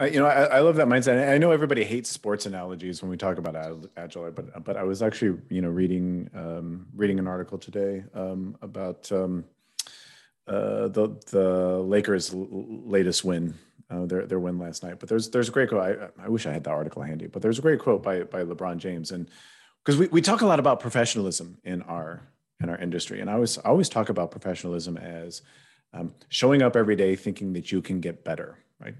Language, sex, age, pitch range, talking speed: English, male, 40-59, 90-115 Hz, 215 wpm